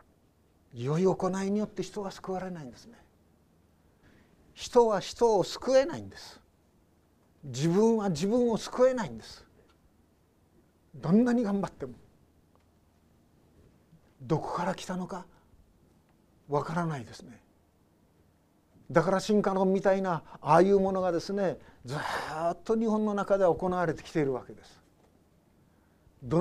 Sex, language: male, Japanese